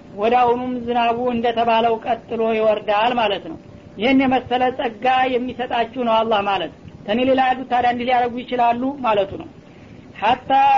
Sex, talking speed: female, 130 wpm